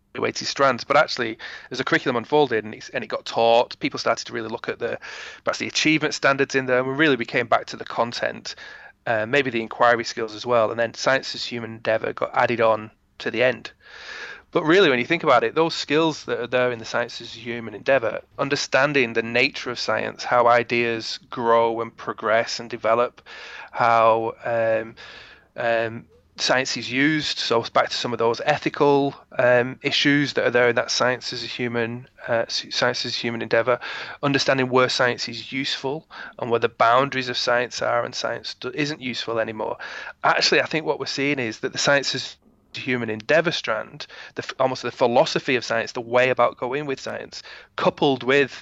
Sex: male